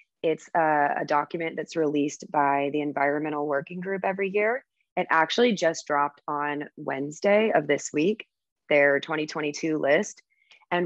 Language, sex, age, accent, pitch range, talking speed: English, female, 20-39, American, 150-175 Hz, 145 wpm